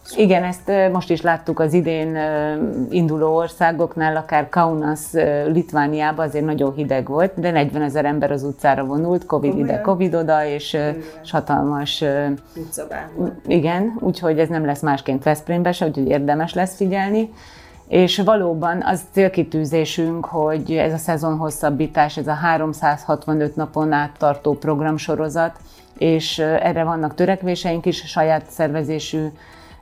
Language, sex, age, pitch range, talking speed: Hungarian, female, 30-49, 150-170 Hz, 125 wpm